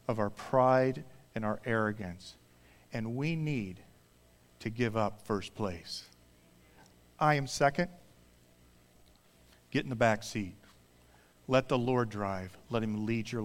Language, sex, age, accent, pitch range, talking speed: English, male, 40-59, American, 95-125 Hz, 135 wpm